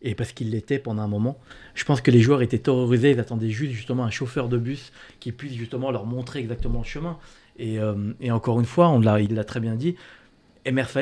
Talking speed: 240 wpm